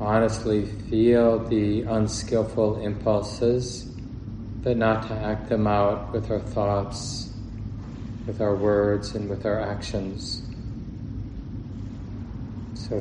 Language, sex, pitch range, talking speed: English, male, 105-115 Hz, 100 wpm